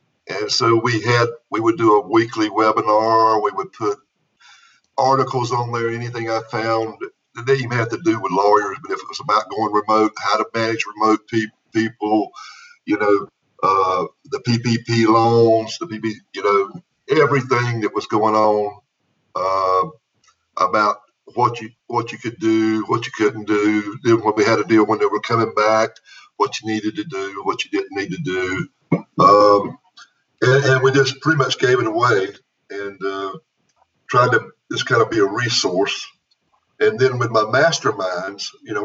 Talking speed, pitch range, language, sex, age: 180 wpm, 110-145 Hz, English, male, 50-69